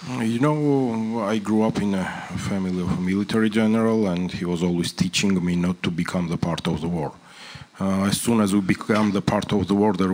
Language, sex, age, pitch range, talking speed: Slovak, male, 40-59, 85-100 Hz, 225 wpm